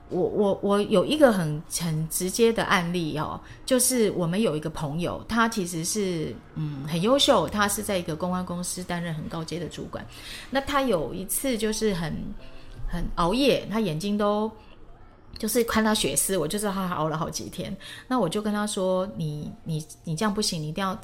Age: 30-49